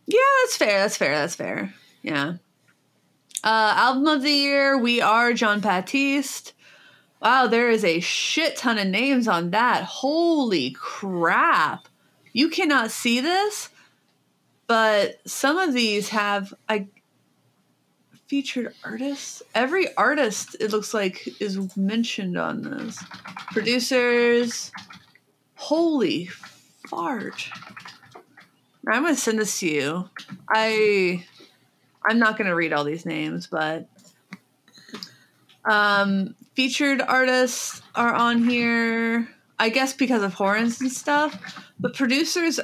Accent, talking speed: American, 115 wpm